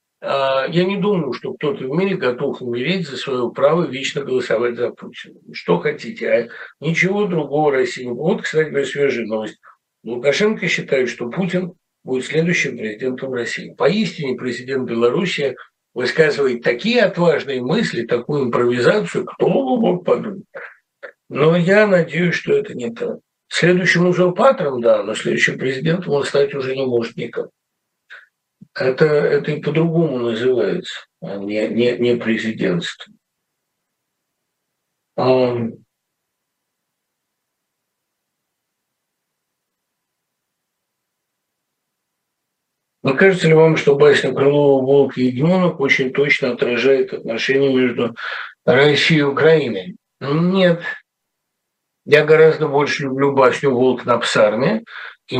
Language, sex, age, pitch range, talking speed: Russian, male, 60-79, 130-180 Hz, 115 wpm